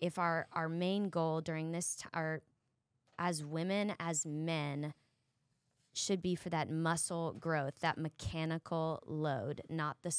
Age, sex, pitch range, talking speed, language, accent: 20-39, female, 135-160 Hz, 130 wpm, English, American